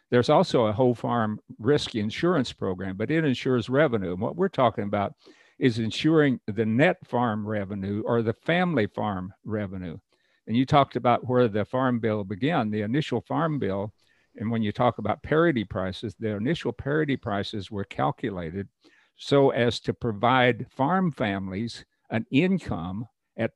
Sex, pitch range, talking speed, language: male, 105-125 Hz, 160 wpm, English